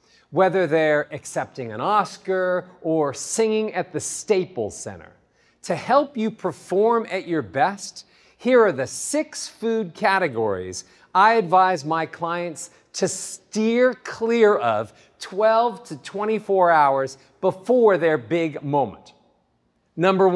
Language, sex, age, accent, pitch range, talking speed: English, male, 50-69, American, 165-225 Hz, 120 wpm